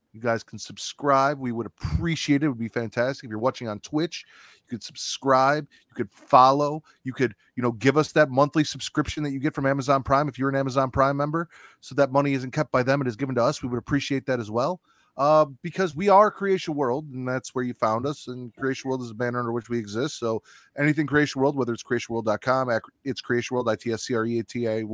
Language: English